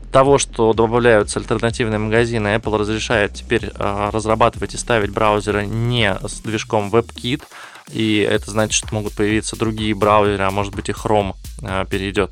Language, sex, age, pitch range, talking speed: Russian, male, 20-39, 105-120 Hz, 155 wpm